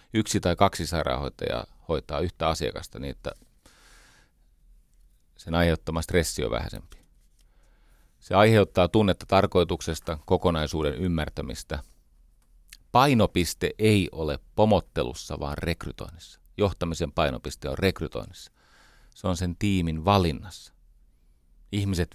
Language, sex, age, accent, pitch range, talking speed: Finnish, male, 40-59, native, 75-95 Hz, 100 wpm